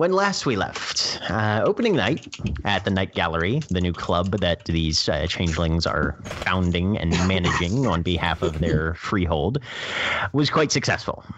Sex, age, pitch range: male, 30-49, 90-125 Hz